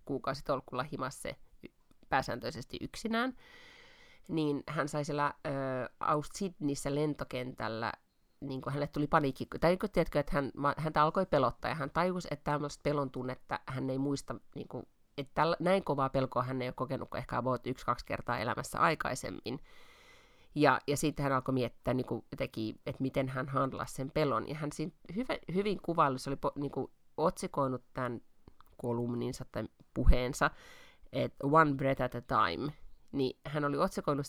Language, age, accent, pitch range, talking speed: Finnish, 30-49, native, 130-160 Hz, 155 wpm